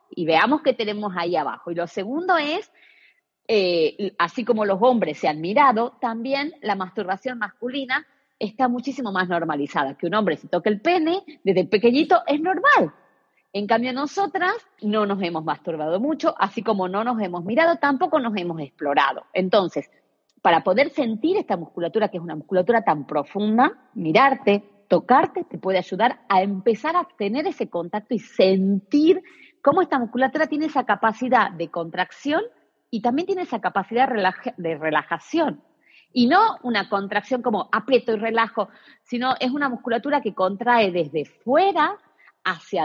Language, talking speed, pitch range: Spanish, 155 wpm, 195-280 Hz